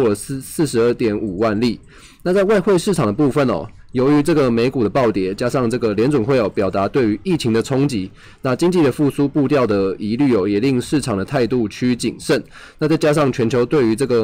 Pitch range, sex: 110-140 Hz, male